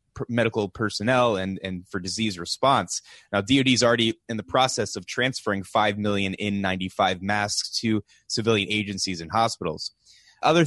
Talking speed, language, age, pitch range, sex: 145 wpm, English, 20-39, 100-125 Hz, male